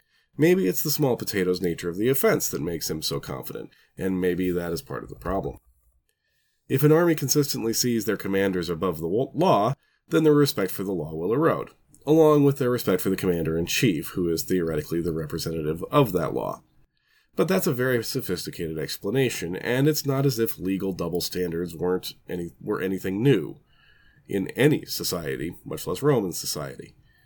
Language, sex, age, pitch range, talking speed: English, male, 30-49, 90-135 Hz, 180 wpm